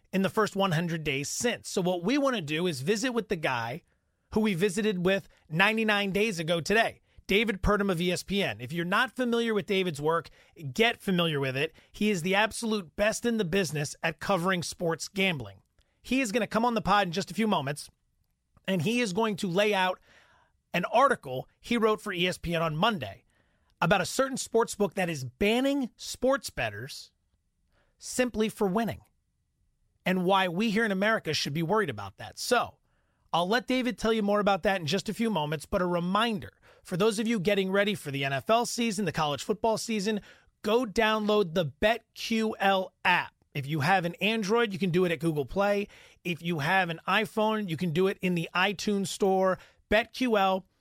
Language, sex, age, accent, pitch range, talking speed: English, male, 30-49, American, 175-220 Hz, 195 wpm